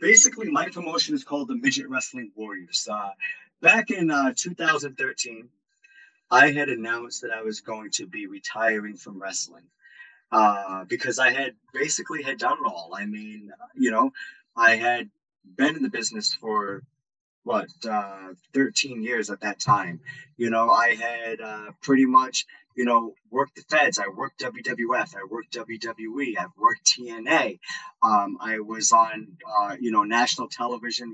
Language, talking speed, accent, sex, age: English, 160 wpm, American, male, 30-49